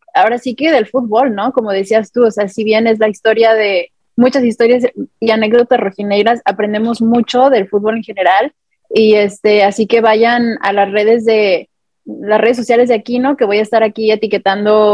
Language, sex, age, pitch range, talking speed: Spanish, female, 20-39, 210-250 Hz, 195 wpm